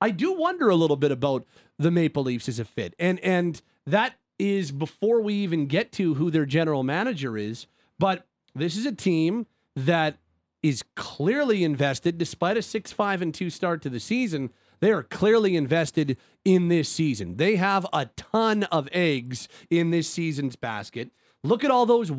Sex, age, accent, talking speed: male, 30-49, American, 175 wpm